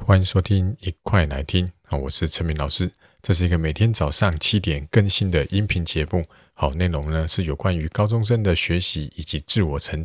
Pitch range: 75-95 Hz